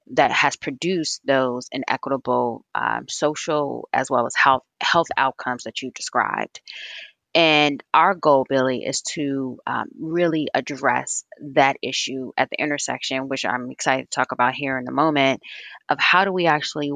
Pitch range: 130-155 Hz